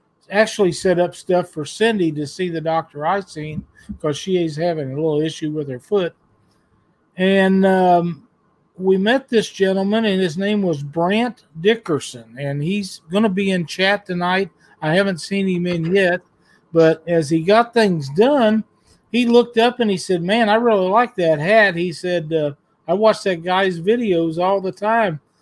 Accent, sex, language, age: American, male, English, 50-69